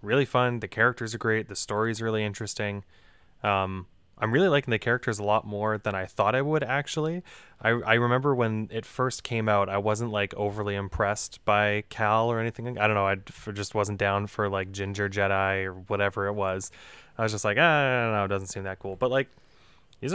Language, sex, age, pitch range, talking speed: English, male, 20-39, 105-130 Hz, 215 wpm